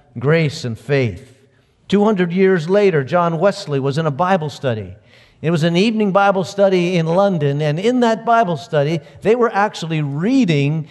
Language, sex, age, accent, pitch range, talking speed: English, male, 50-69, American, 140-180 Hz, 170 wpm